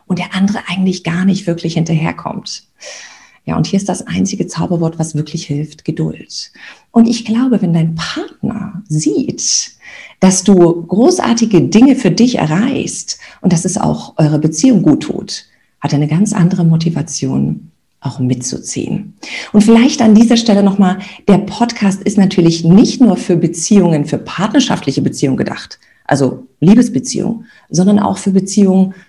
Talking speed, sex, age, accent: 150 wpm, female, 50-69, German